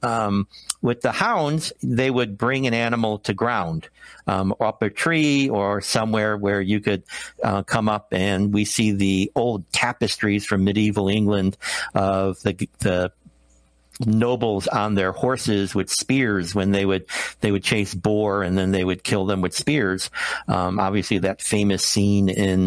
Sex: male